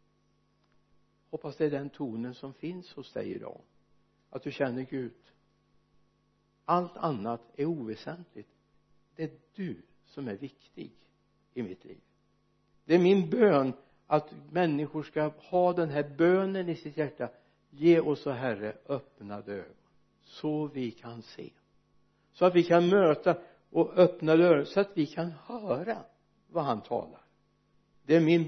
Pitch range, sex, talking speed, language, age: 130-165 Hz, male, 145 wpm, Swedish, 60-79